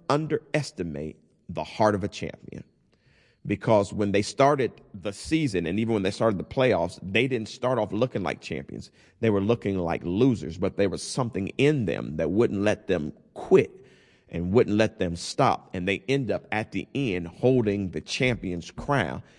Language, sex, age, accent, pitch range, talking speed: English, male, 40-59, American, 95-120 Hz, 180 wpm